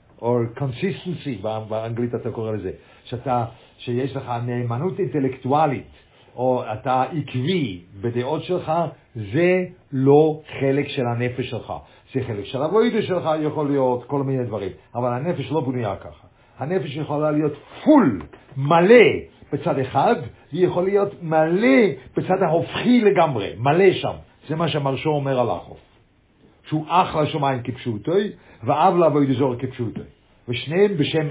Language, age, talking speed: English, 50-69, 115 wpm